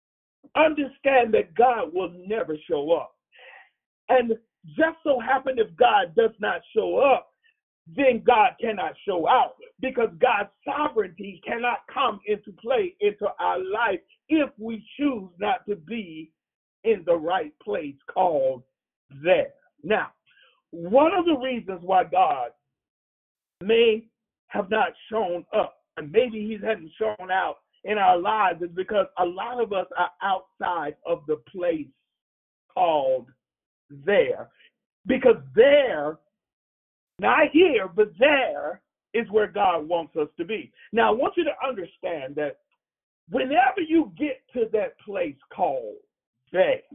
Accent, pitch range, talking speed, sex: American, 185-290 Hz, 135 wpm, male